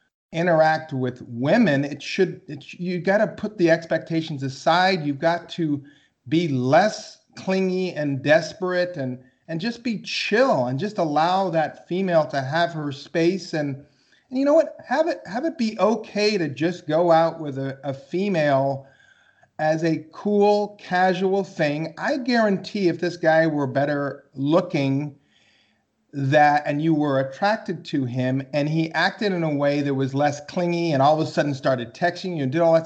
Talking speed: 175 wpm